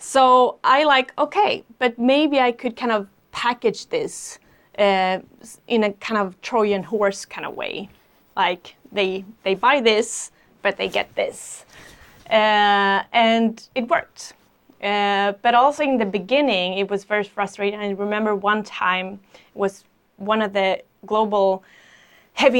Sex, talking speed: female, 145 wpm